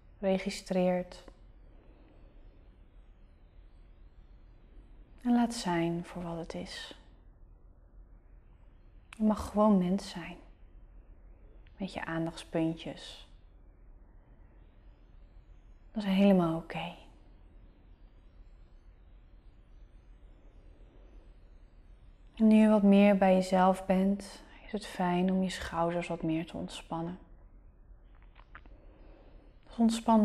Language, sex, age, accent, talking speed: Dutch, female, 30-49, Dutch, 75 wpm